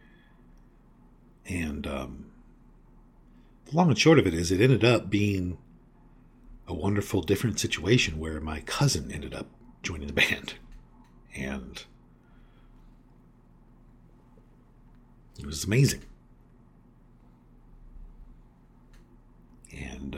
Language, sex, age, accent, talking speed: English, male, 50-69, American, 90 wpm